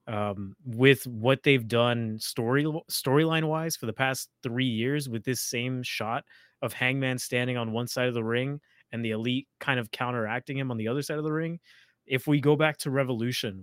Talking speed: 205 wpm